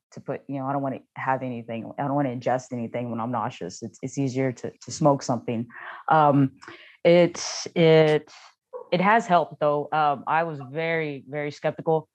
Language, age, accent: English, 20-39, American